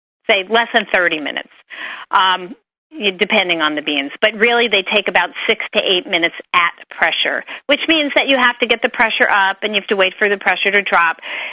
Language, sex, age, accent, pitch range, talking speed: English, female, 40-59, American, 175-220 Hz, 215 wpm